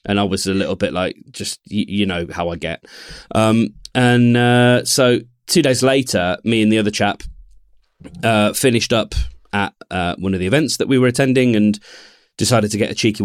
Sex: male